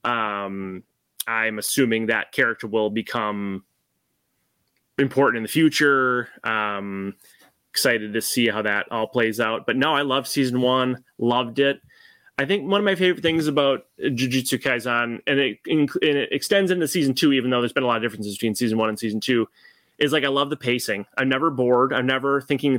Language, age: English, 20-39